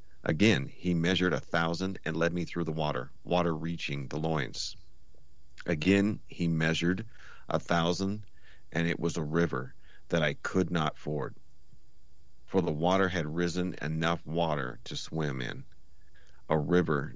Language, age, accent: English, 40-59, American